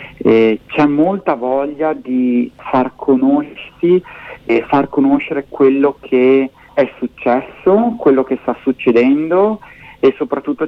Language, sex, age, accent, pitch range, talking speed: Italian, male, 40-59, native, 120-145 Hz, 105 wpm